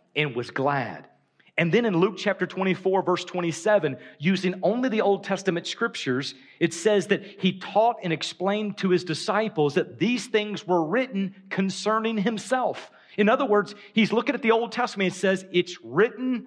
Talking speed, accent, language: 170 wpm, American, English